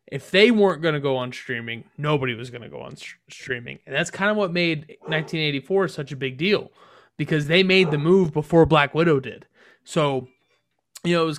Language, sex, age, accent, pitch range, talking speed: English, male, 20-39, American, 145-175 Hz, 210 wpm